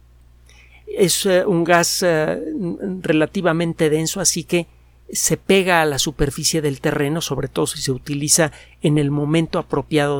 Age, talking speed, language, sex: 50-69, 135 wpm, Spanish, male